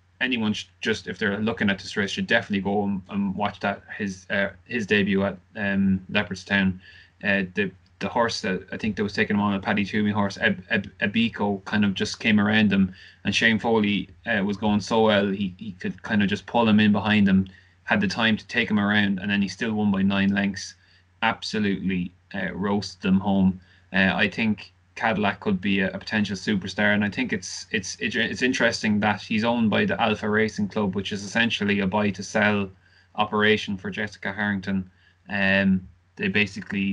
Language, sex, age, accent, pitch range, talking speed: English, male, 20-39, Irish, 95-110 Hz, 205 wpm